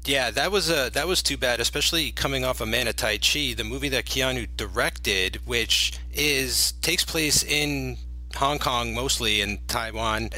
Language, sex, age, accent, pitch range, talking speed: English, male, 30-49, American, 100-135 Hz, 180 wpm